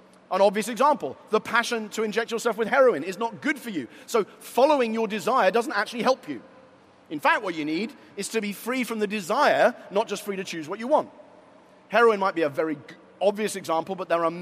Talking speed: 220 wpm